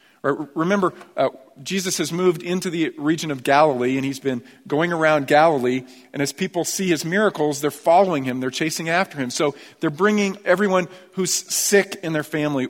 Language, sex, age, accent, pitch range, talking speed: English, male, 40-59, American, 140-180 Hz, 180 wpm